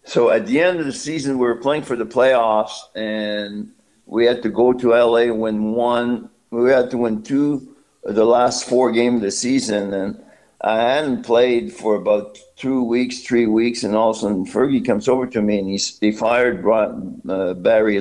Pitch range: 105-125 Hz